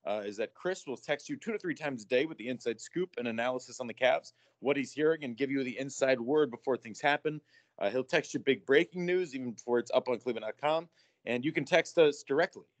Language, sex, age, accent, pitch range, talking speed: English, male, 30-49, American, 120-150 Hz, 250 wpm